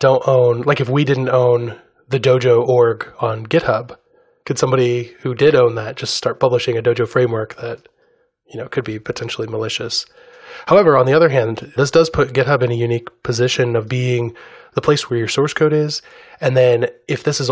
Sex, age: male, 20-39